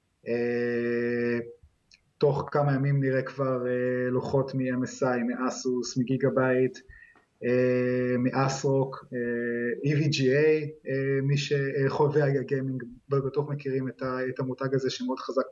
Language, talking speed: Hebrew, 80 wpm